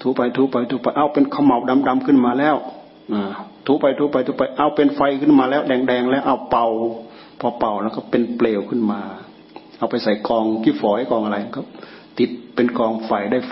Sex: male